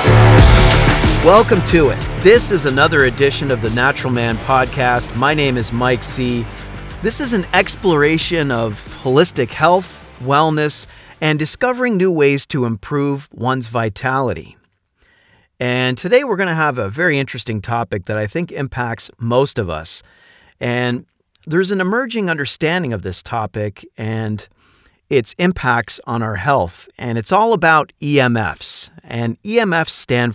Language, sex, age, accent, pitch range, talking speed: English, male, 40-59, American, 115-155 Hz, 140 wpm